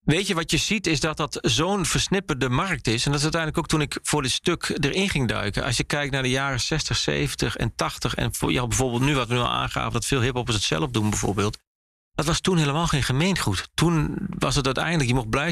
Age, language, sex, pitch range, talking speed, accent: 40-59, Dutch, male, 115-155 Hz, 250 wpm, Dutch